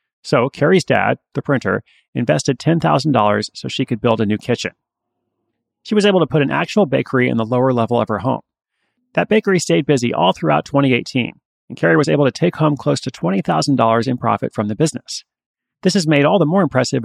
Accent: American